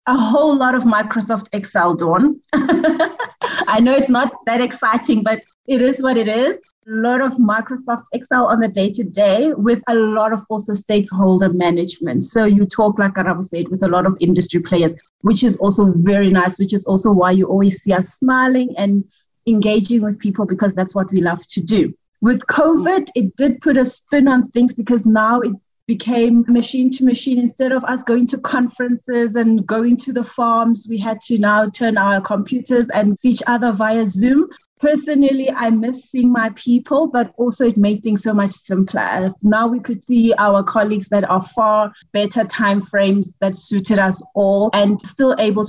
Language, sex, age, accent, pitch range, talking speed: English, female, 30-49, South African, 195-245 Hz, 190 wpm